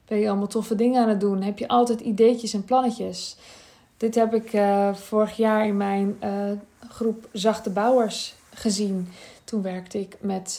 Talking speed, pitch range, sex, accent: 180 wpm, 195-230 Hz, female, Dutch